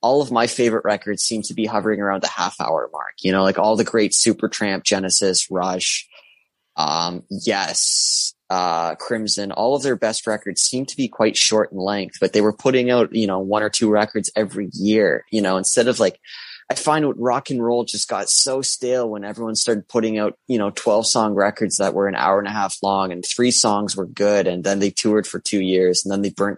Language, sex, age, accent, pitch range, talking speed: English, male, 20-39, American, 95-110 Hz, 230 wpm